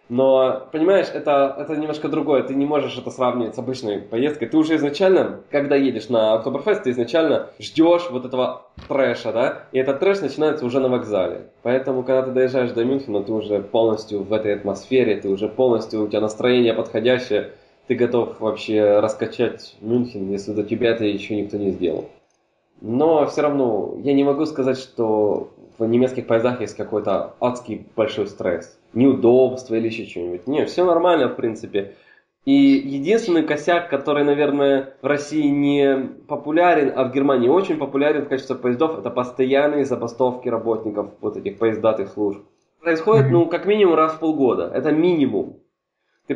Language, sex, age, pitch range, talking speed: Russian, male, 20-39, 115-150 Hz, 165 wpm